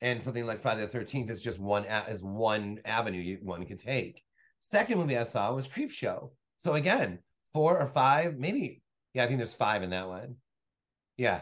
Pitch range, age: 105-140 Hz, 30-49